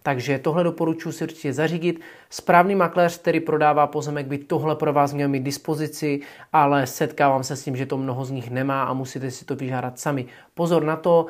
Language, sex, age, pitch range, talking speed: Czech, male, 30-49, 145-180 Hz, 200 wpm